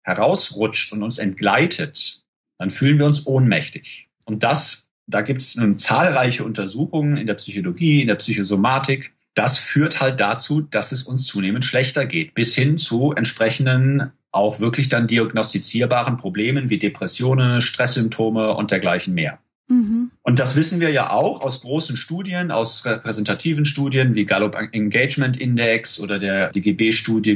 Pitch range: 105-135 Hz